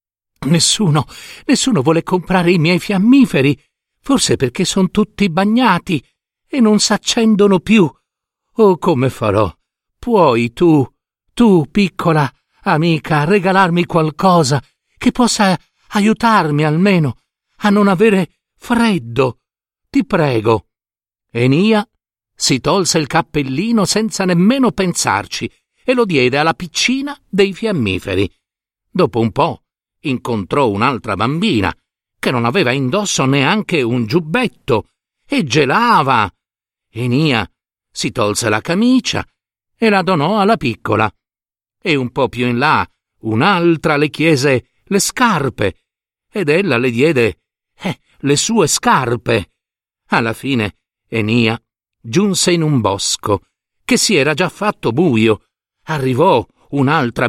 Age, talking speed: 60-79, 115 wpm